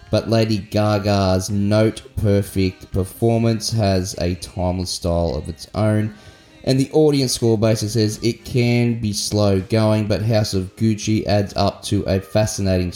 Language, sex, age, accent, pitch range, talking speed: English, male, 20-39, Australian, 90-110 Hz, 150 wpm